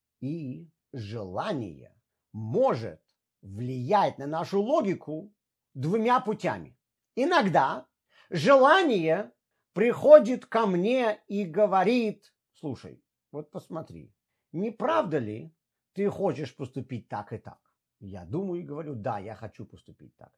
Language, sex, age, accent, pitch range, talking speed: Russian, male, 50-69, native, 160-240 Hz, 110 wpm